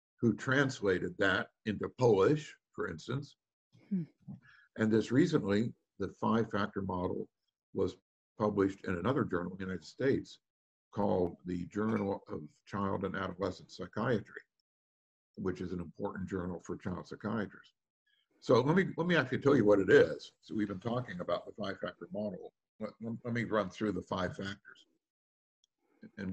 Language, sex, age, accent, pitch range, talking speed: English, male, 50-69, American, 90-120 Hz, 150 wpm